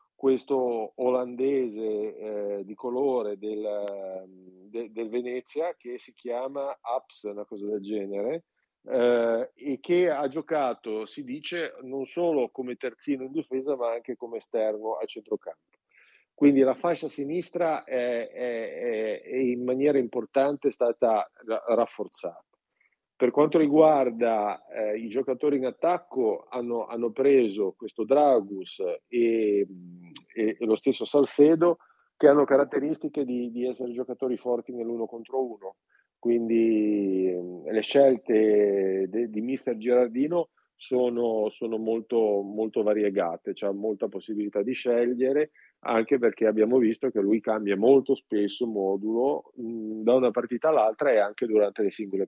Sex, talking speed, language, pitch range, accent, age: male, 130 wpm, Italian, 110-135 Hz, native, 40-59